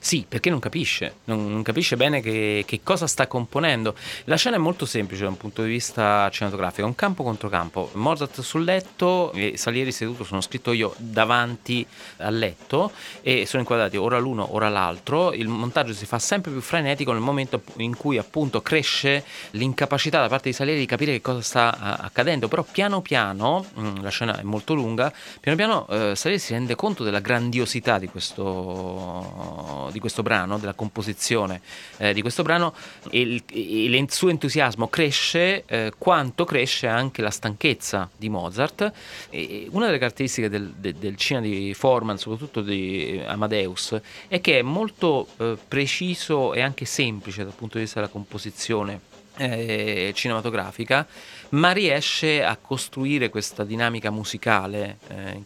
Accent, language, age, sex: native, Italian, 30-49, male